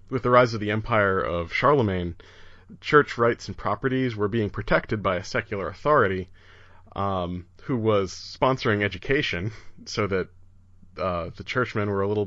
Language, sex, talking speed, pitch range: English, male, 155 wpm, 95-120 Hz